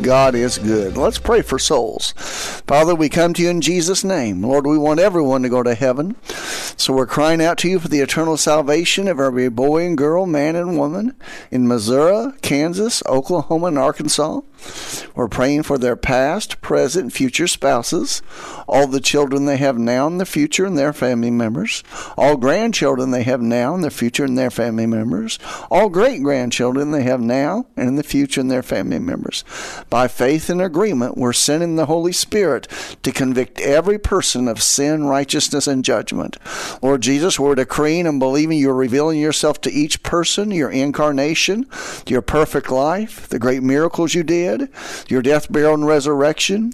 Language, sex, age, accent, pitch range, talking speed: English, male, 50-69, American, 135-165 Hz, 180 wpm